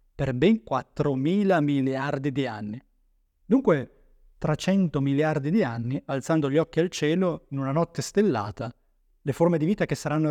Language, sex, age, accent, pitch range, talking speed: Italian, male, 30-49, native, 135-180 Hz, 155 wpm